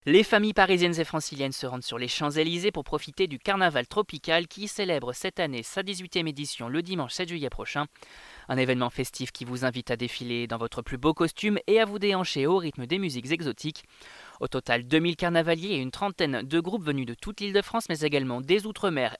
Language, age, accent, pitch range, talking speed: French, 20-39, French, 135-195 Hz, 215 wpm